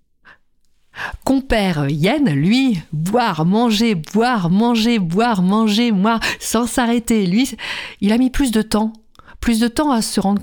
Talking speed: 145 wpm